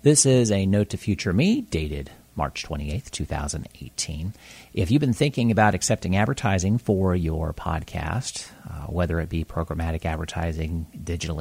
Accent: American